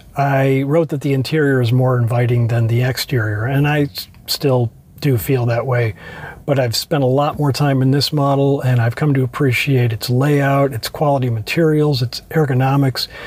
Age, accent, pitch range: 50-69, American, 125-150 Hz